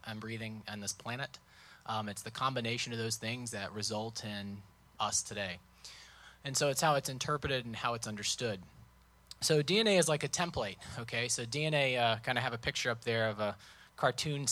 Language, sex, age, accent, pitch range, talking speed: English, male, 30-49, American, 115-140 Hz, 195 wpm